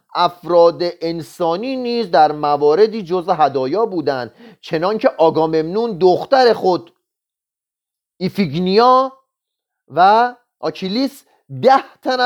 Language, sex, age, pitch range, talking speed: Persian, male, 40-59, 180-250 Hz, 90 wpm